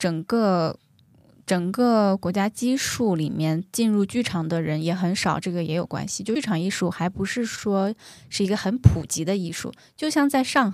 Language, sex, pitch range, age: Chinese, female, 175-215 Hz, 20-39